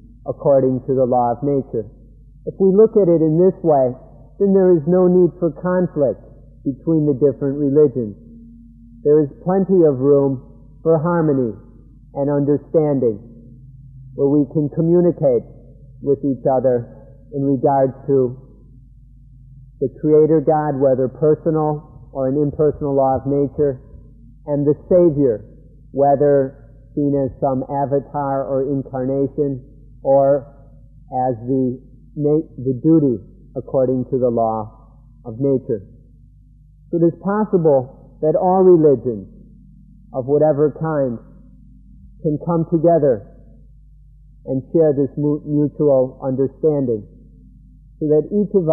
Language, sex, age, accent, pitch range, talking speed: English, male, 50-69, American, 130-155 Hz, 125 wpm